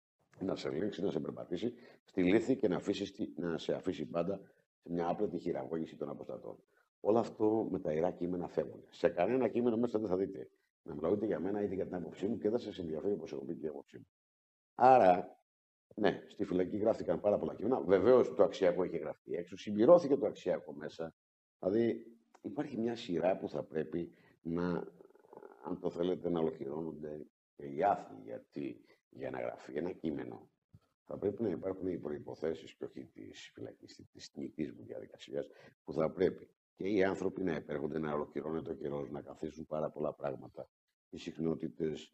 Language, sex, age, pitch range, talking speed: Greek, male, 50-69, 75-95 Hz, 175 wpm